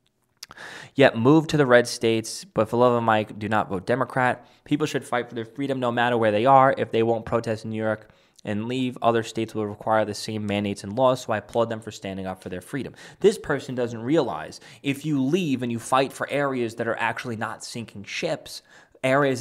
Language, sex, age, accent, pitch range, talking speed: English, male, 20-39, American, 110-150 Hz, 225 wpm